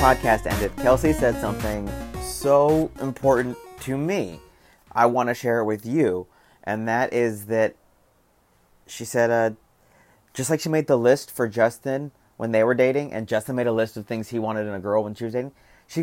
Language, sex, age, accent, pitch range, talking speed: English, male, 30-49, American, 105-130 Hz, 195 wpm